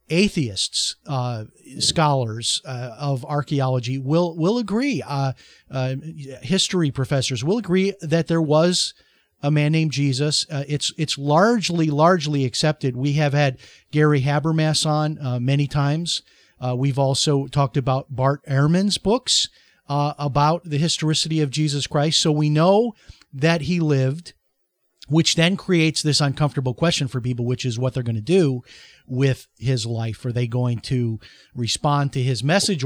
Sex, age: male, 40-59